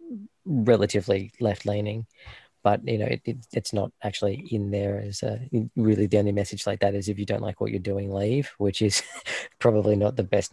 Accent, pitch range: Australian, 105-115 Hz